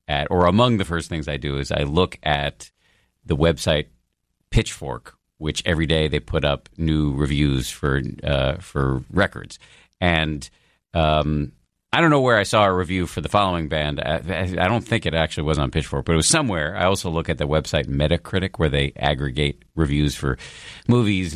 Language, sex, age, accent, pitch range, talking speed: English, male, 50-69, American, 75-100 Hz, 190 wpm